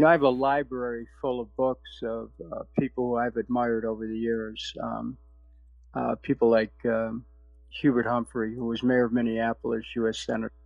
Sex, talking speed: male, 180 wpm